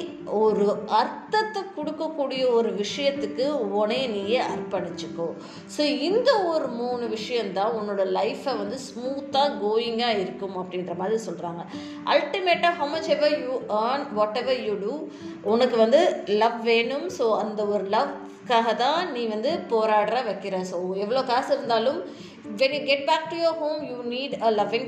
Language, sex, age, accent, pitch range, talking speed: Tamil, female, 20-39, native, 205-280 Hz, 50 wpm